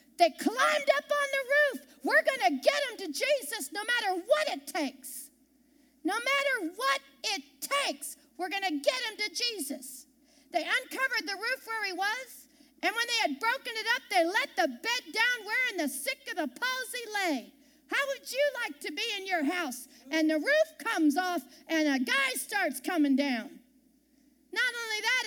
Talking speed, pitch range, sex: 190 wpm, 275-400 Hz, female